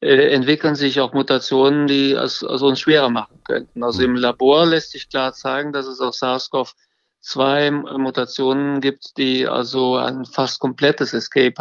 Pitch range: 125-140 Hz